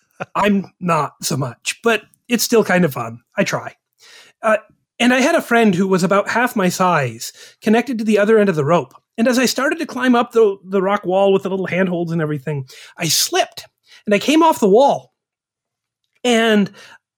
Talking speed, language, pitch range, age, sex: 205 wpm, English, 190-260 Hz, 30-49, male